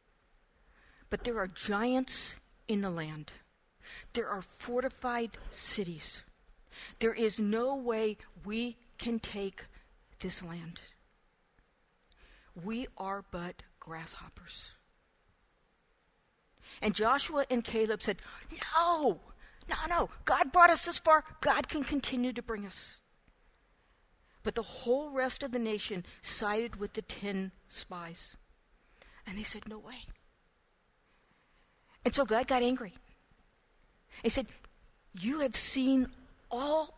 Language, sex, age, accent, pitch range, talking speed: English, female, 50-69, American, 195-255 Hz, 115 wpm